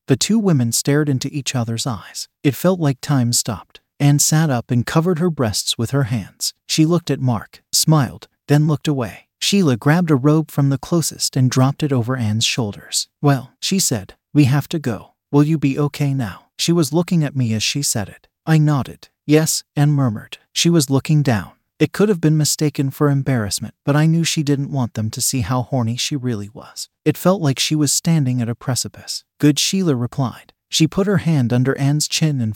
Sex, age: male, 40-59